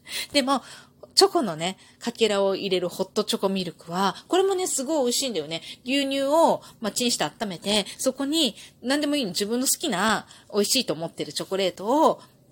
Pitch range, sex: 180-305 Hz, female